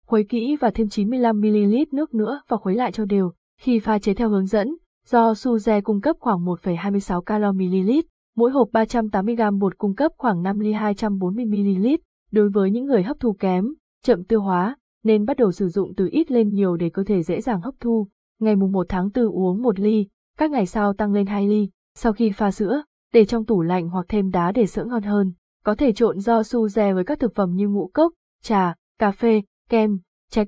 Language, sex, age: Vietnamese, female, 20-39